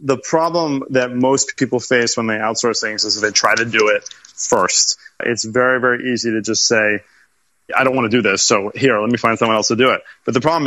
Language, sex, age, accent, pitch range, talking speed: English, male, 30-49, American, 110-130 Hz, 245 wpm